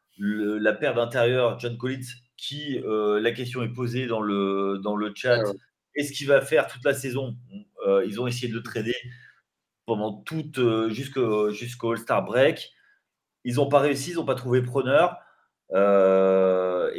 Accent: French